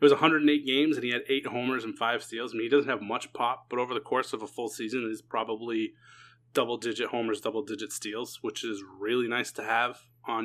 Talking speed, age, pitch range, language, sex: 240 wpm, 20-39, 120-140 Hz, English, male